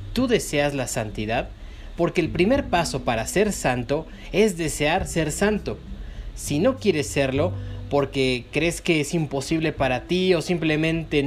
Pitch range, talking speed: 135-175 Hz, 150 wpm